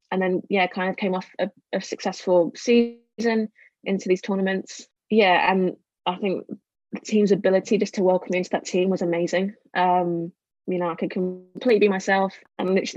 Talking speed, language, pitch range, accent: 185 wpm, English, 180-205 Hz, British